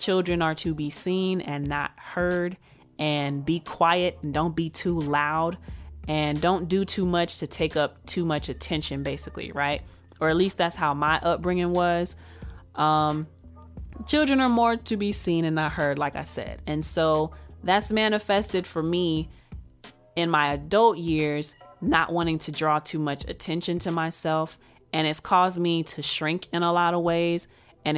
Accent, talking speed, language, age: American, 175 wpm, English, 30-49